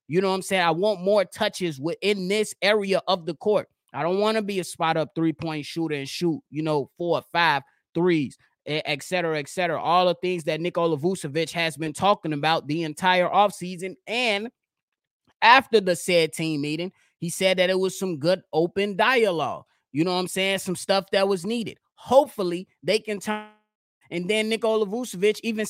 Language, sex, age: English, male, 20-39